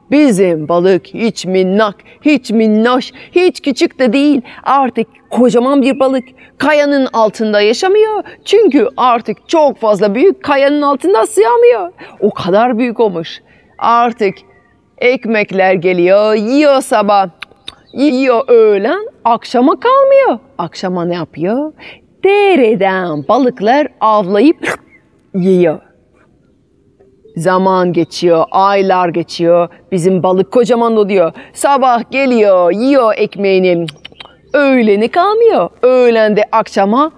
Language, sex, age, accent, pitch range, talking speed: Turkish, female, 40-59, native, 190-275 Hz, 100 wpm